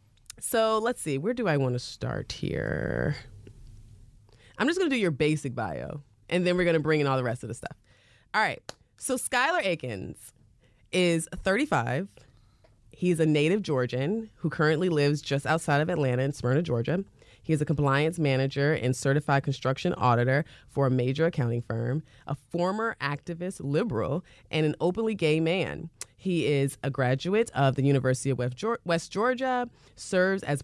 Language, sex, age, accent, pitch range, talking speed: English, female, 20-39, American, 130-180 Hz, 170 wpm